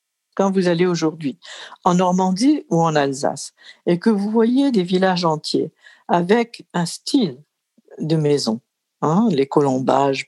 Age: 60-79